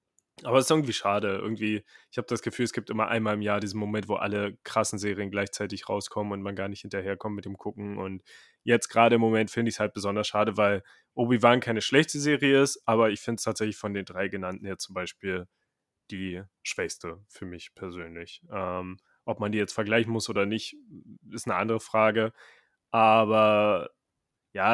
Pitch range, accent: 105-125 Hz, German